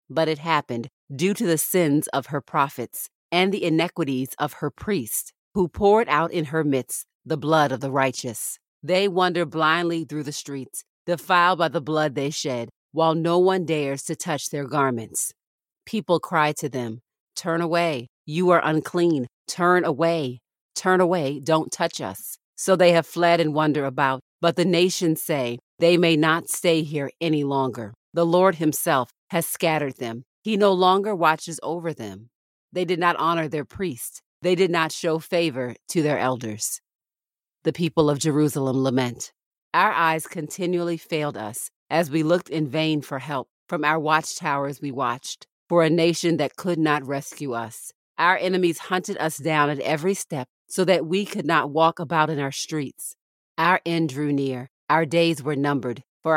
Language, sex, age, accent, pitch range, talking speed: English, female, 40-59, American, 140-170 Hz, 175 wpm